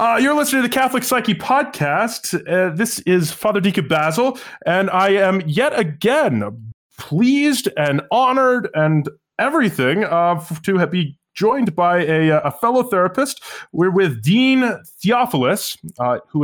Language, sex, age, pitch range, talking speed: English, male, 20-39, 145-205 Hz, 145 wpm